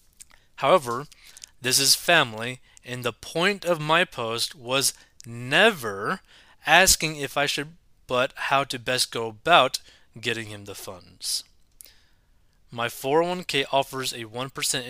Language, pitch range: English, 115-145 Hz